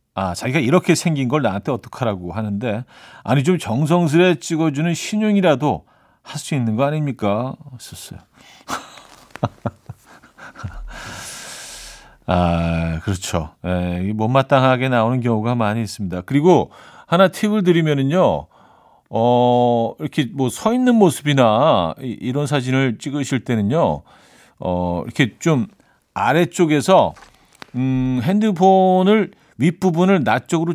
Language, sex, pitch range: Korean, male, 105-155 Hz